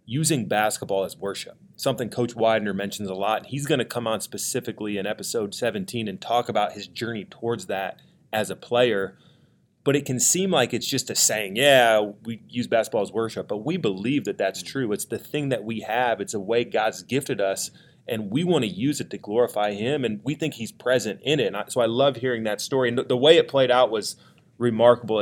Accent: American